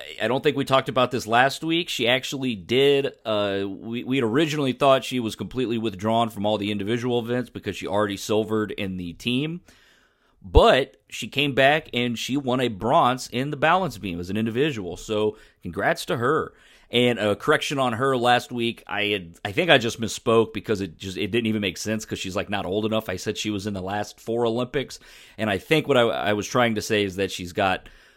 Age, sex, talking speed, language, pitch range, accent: 30-49, male, 220 wpm, English, 100-125 Hz, American